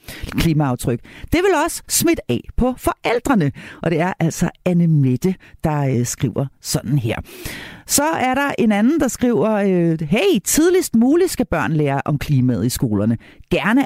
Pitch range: 150-240 Hz